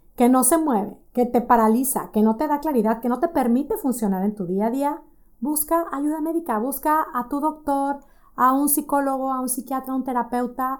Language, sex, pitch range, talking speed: Spanish, female, 230-295 Hz, 210 wpm